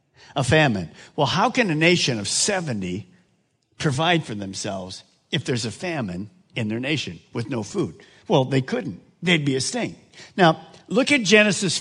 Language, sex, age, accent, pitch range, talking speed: English, male, 50-69, American, 145-230 Hz, 170 wpm